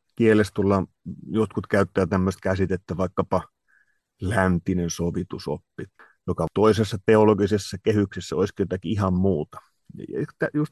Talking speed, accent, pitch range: 100 wpm, native, 95-115 Hz